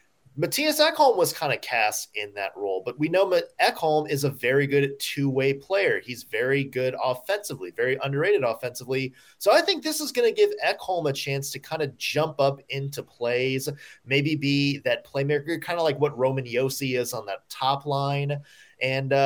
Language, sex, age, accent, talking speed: English, male, 20-39, American, 185 wpm